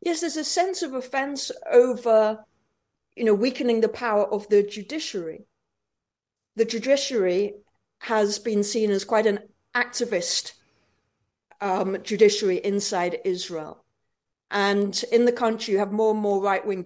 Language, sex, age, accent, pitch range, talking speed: English, female, 50-69, British, 200-235 Hz, 135 wpm